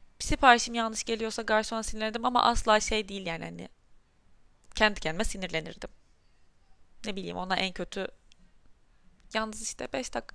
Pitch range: 210-275 Hz